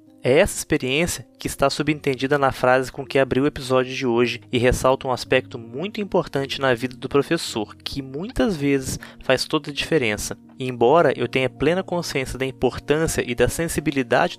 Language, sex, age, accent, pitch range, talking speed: Portuguese, male, 20-39, Brazilian, 125-160 Hz, 180 wpm